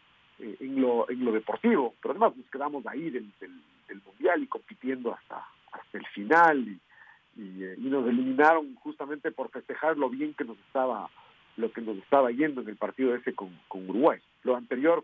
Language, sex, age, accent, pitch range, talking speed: Spanish, male, 50-69, Mexican, 110-150 Hz, 190 wpm